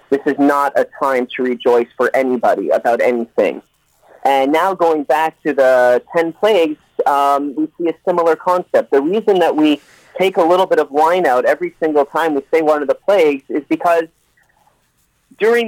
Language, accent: English, American